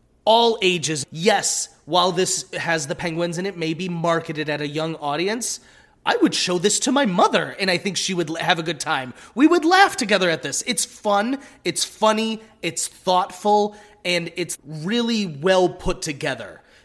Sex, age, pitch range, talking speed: male, 30-49, 155-195 Hz, 180 wpm